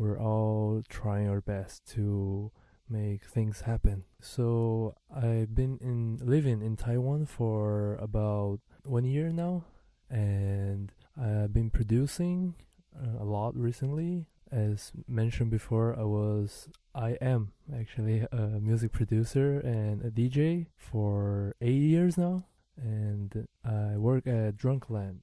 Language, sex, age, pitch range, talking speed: English, male, 20-39, 105-125 Hz, 120 wpm